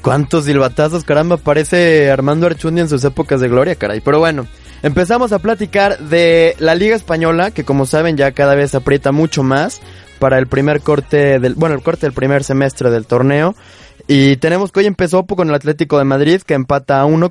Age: 20-39